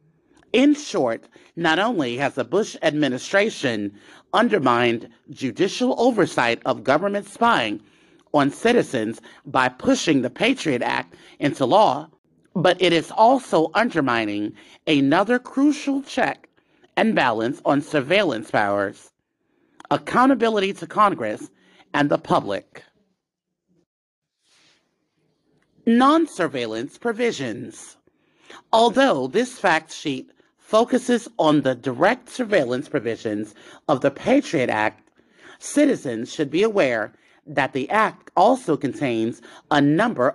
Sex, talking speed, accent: male, 105 wpm, American